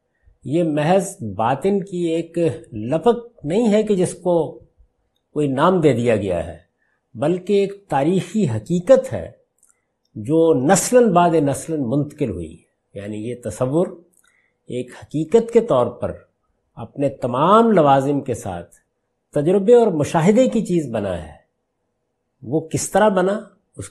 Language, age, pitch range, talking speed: Urdu, 50-69, 120-175 Hz, 135 wpm